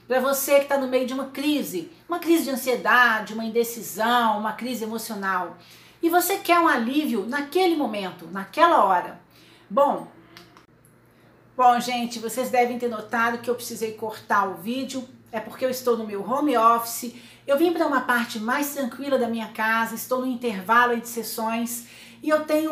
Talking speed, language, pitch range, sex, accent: 175 wpm, Portuguese, 230-285 Hz, female, Brazilian